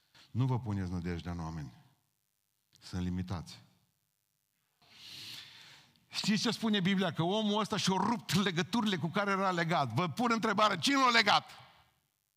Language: Romanian